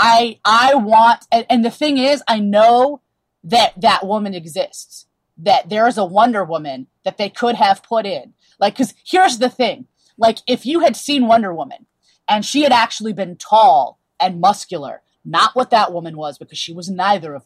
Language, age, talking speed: English, 20-39, 195 wpm